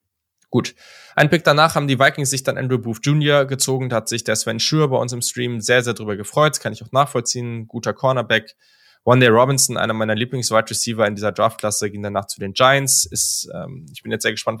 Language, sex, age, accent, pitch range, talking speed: German, male, 10-29, German, 100-125 Hz, 230 wpm